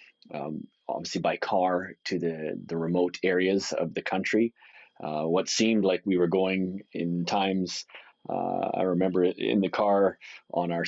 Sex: male